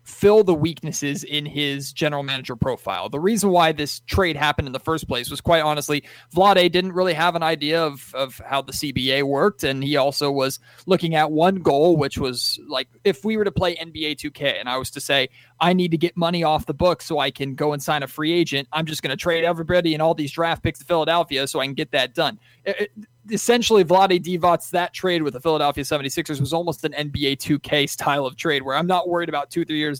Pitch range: 135-165 Hz